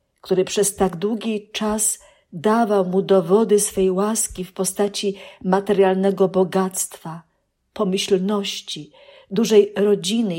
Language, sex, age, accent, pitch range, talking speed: Polish, female, 50-69, native, 185-230 Hz, 100 wpm